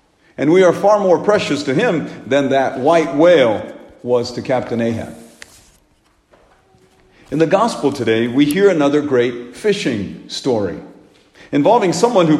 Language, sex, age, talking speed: English, male, 50-69, 140 wpm